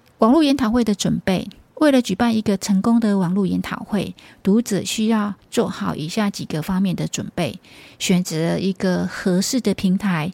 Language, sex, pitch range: Chinese, female, 180-220 Hz